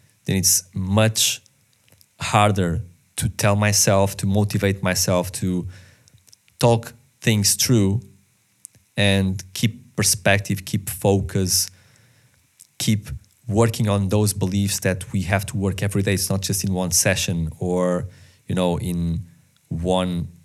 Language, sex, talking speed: English, male, 125 wpm